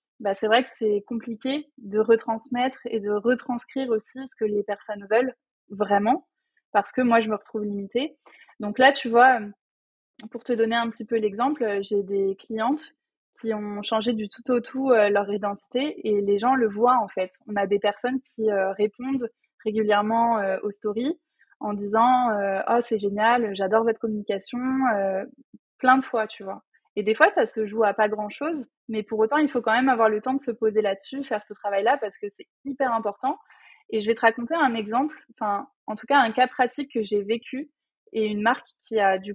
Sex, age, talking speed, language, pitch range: female, 20-39, 210 wpm, French, 210-255 Hz